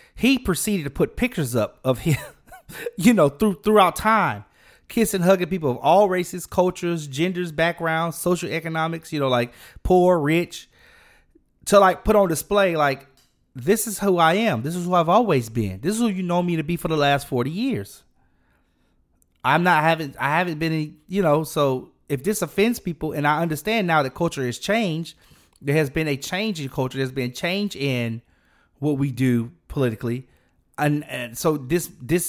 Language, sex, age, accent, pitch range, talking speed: English, male, 30-49, American, 130-180 Hz, 185 wpm